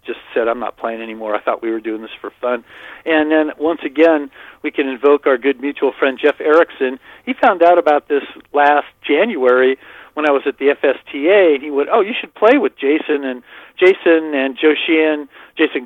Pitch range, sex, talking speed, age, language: 130-155 Hz, male, 210 wpm, 50-69, English